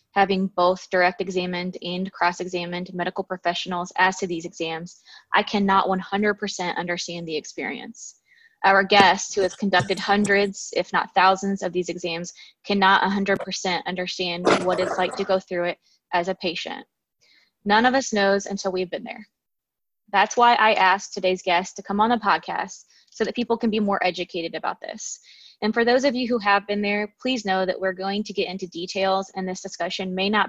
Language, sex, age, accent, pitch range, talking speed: English, female, 20-39, American, 180-210 Hz, 185 wpm